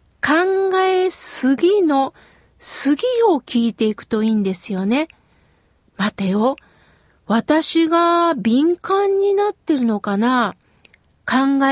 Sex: female